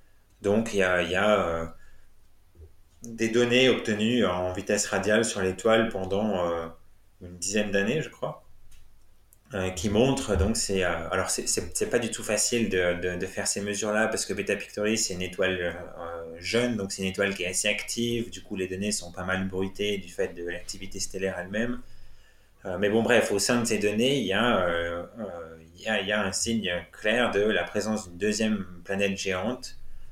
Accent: French